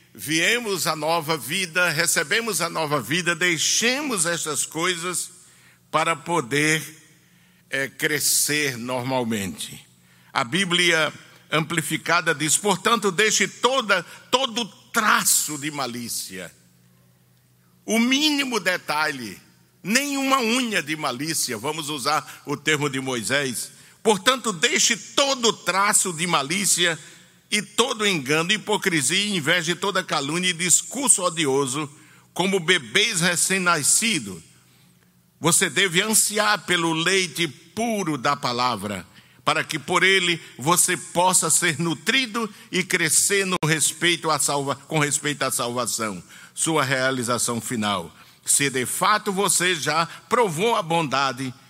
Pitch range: 140-195 Hz